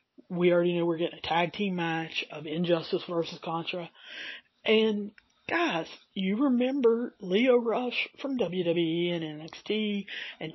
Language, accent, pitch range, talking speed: English, American, 160-195 Hz, 135 wpm